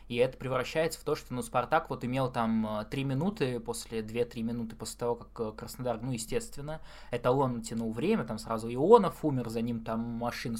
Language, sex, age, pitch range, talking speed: Russian, male, 20-39, 120-150 Hz, 190 wpm